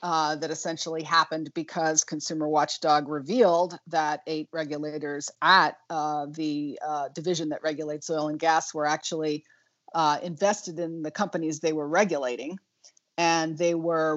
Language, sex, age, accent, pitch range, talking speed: English, female, 40-59, American, 150-170 Hz, 145 wpm